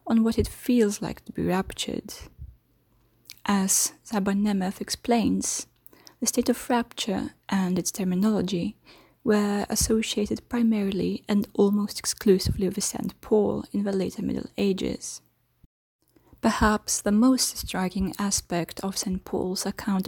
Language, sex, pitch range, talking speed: English, female, 185-225 Hz, 125 wpm